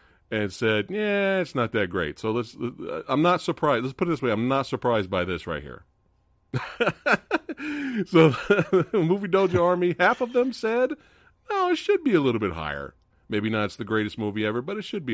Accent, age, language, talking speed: American, 40-59, English, 205 wpm